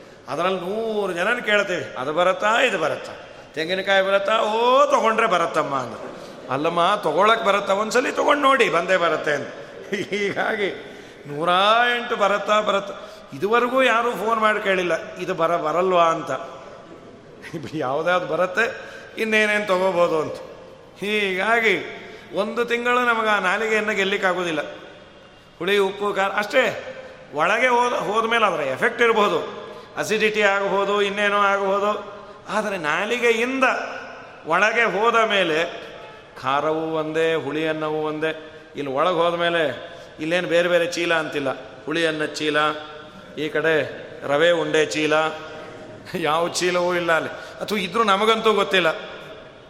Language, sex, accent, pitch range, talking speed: Kannada, male, native, 160-215 Hz, 120 wpm